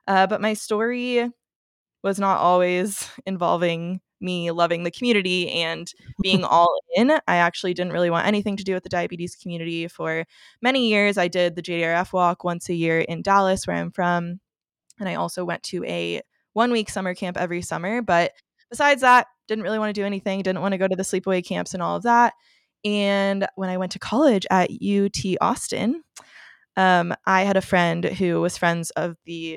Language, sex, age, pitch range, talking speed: English, female, 20-39, 170-200 Hz, 195 wpm